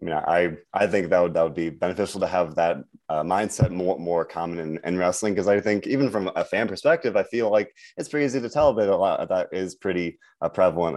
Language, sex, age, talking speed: English, male, 20-39, 250 wpm